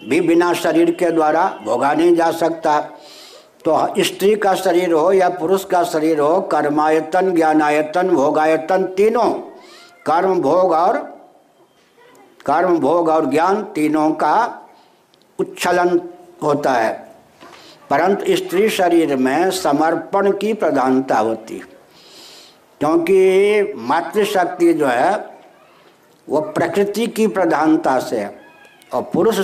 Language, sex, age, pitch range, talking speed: Hindi, male, 60-79, 160-205 Hz, 110 wpm